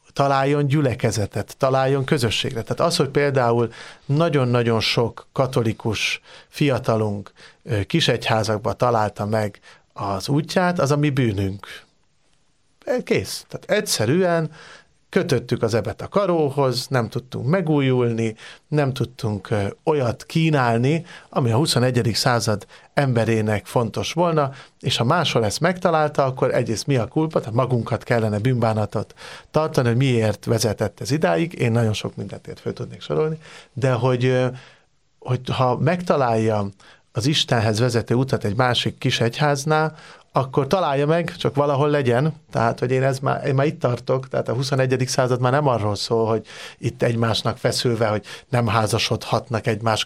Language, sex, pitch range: Hungarian, male, 115-145 Hz